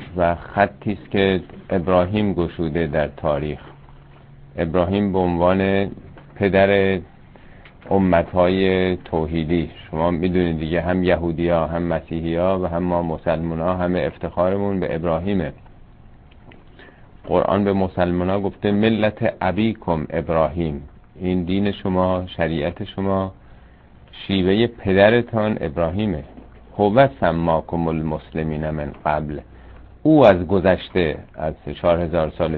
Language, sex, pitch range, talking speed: Persian, male, 80-100 Hz, 110 wpm